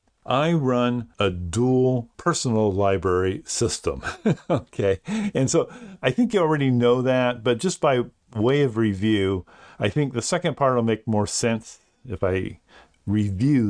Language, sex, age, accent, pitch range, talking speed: English, male, 50-69, American, 105-140 Hz, 150 wpm